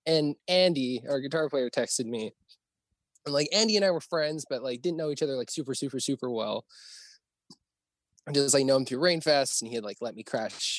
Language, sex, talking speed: English, male, 215 wpm